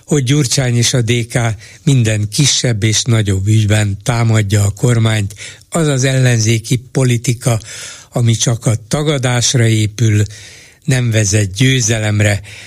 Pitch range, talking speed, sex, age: 110-135 Hz, 120 wpm, male, 60-79